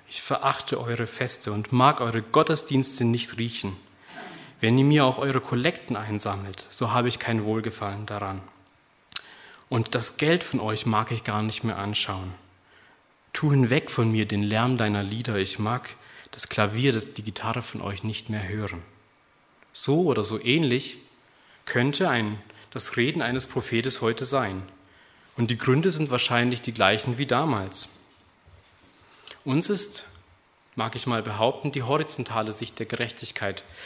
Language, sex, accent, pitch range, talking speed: German, male, German, 105-135 Hz, 150 wpm